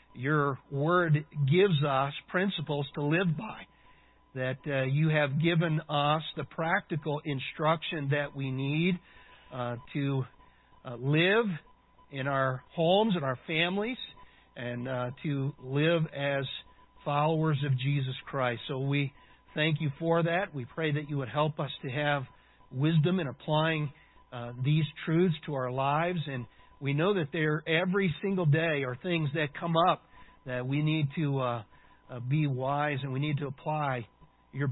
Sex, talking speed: male, 155 wpm